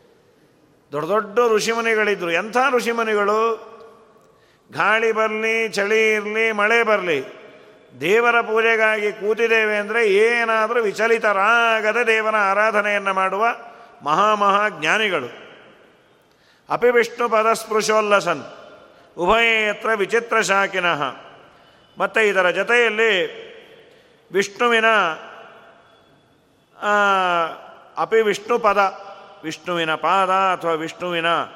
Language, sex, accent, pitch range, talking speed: Kannada, male, native, 180-225 Hz, 75 wpm